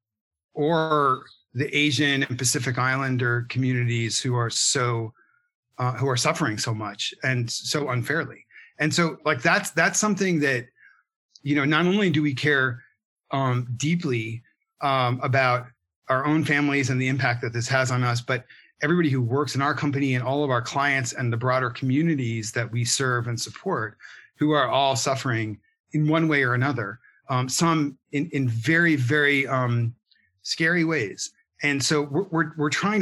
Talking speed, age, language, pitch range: 170 wpm, 40-59, English, 120-150 Hz